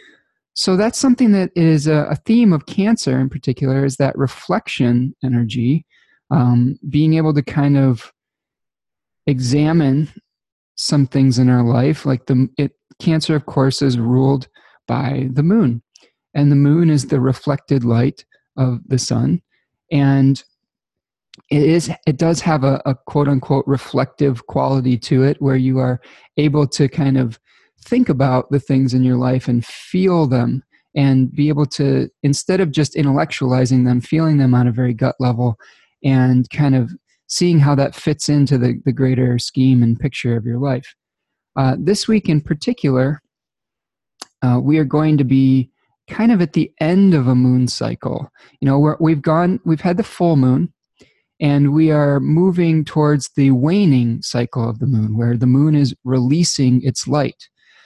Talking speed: 165 wpm